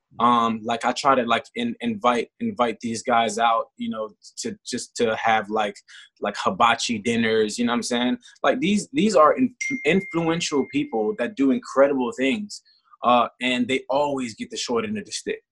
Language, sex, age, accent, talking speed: English, male, 20-39, American, 190 wpm